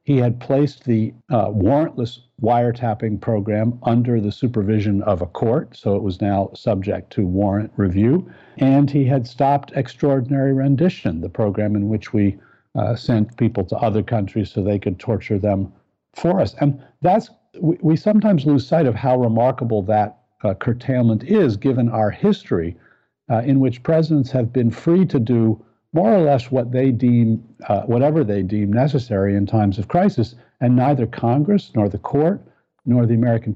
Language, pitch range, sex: English, 105-135 Hz, male